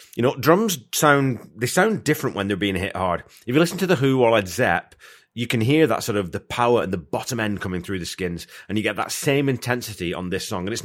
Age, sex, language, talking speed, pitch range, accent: 30-49, male, English, 265 wpm, 90-120 Hz, British